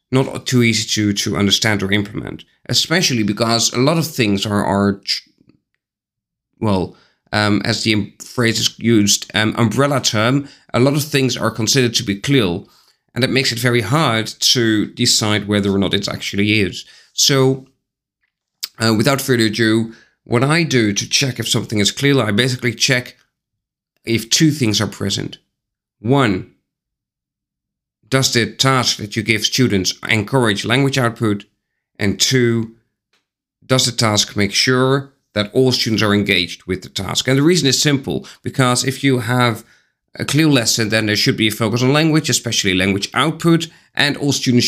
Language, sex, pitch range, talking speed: English, male, 105-130 Hz, 165 wpm